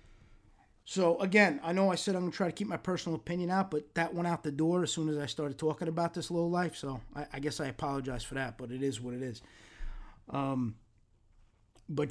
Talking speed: 240 wpm